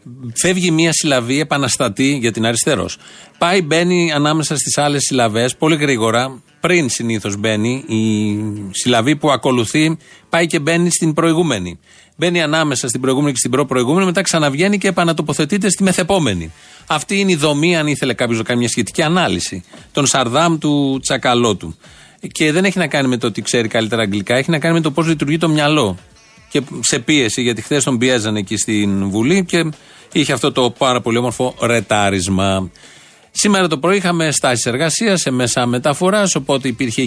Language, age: Greek, 40-59